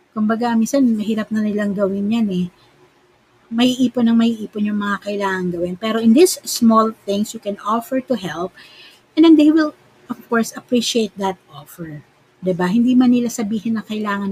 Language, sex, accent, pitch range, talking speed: Filipino, female, native, 185-235 Hz, 180 wpm